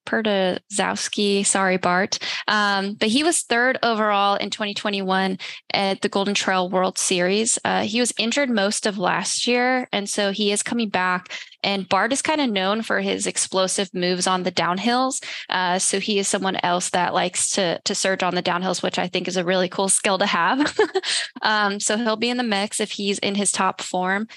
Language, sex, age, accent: English, female, 10-29, American